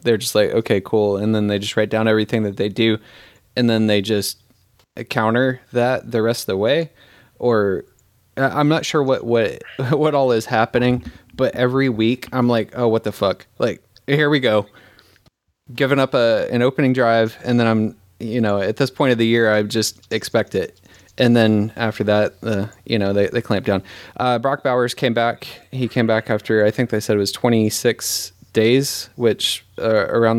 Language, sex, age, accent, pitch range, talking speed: English, male, 20-39, American, 105-120 Hz, 200 wpm